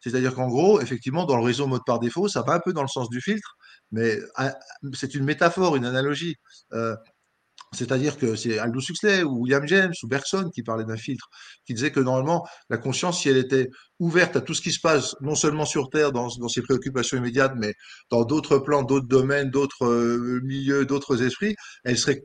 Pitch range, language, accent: 125-165 Hz, French, French